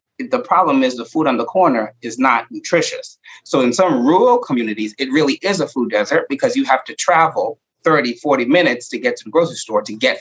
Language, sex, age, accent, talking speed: English, male, 30-49, American, 225 wpm